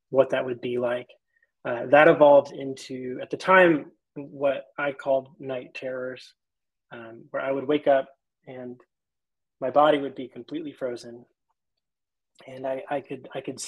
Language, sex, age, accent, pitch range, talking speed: English, male, 20-39, American, 130-150 Hz, 160 wpm